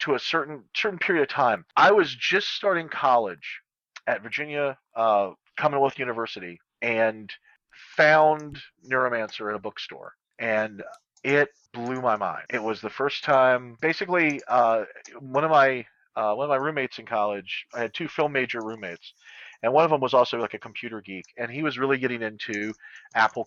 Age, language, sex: 40-59, English, male